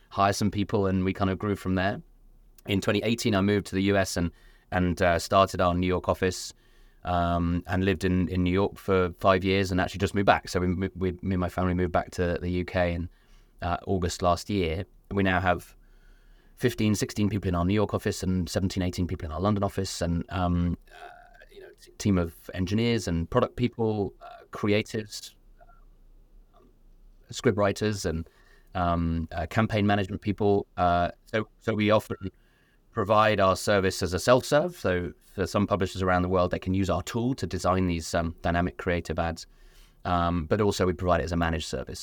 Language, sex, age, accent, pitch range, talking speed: English, male, 30-49, British, 90-105 Hz, 200 wpm